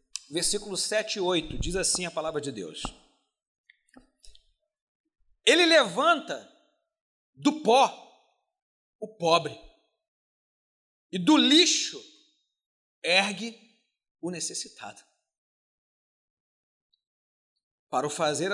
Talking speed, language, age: 80 wpm, Portuguese, 40-59